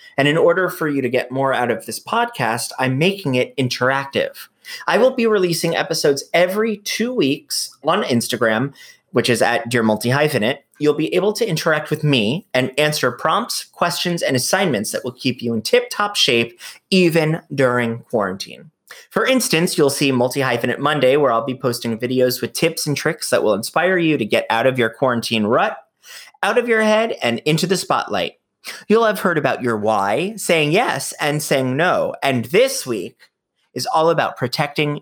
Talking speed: 180 wpm